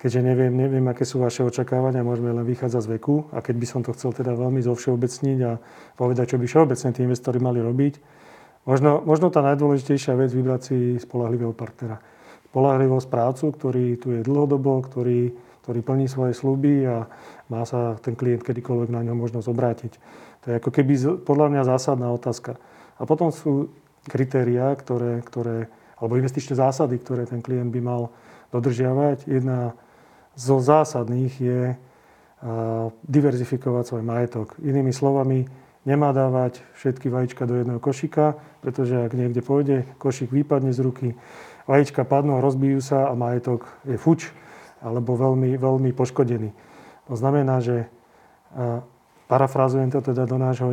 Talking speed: 150 wpm